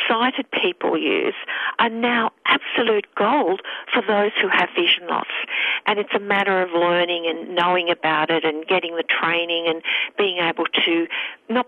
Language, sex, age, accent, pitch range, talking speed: English, female, 50-69, Australian, 180-250 Hz, 165 wpm